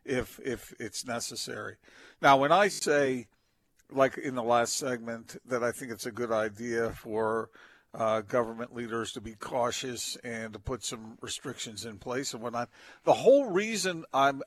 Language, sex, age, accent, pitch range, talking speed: English, male, 50-69, American, 120-155 Hz, 165 wpm